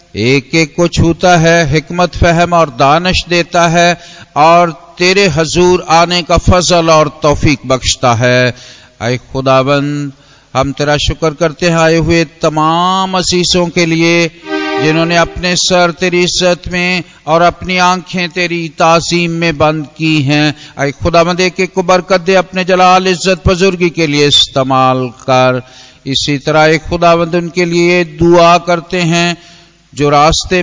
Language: Hindi